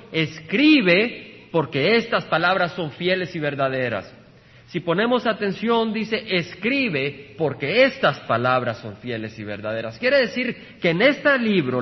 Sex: male